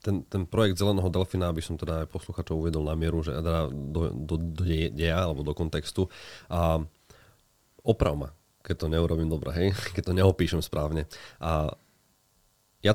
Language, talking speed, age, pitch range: Slovak, 160 wpm, 30-49, 80-95 Hz